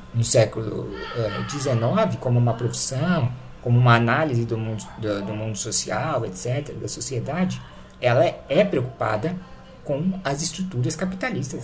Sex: male